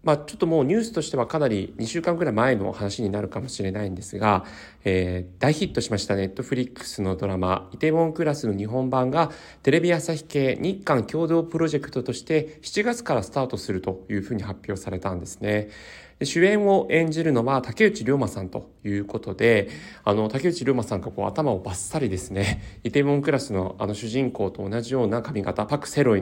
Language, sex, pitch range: Japanese, male, 100-135 Hz